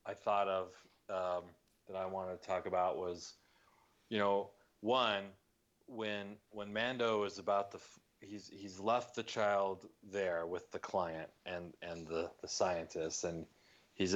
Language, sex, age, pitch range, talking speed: English, male, 30-49, 85-105 Hz, 155 wpm